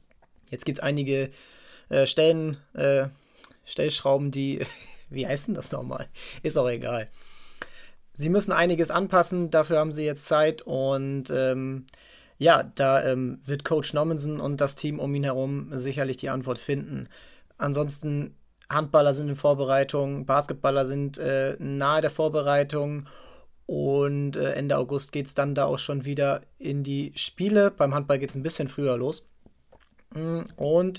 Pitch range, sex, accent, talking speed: 135-155 Hz, male, German, 145 wpm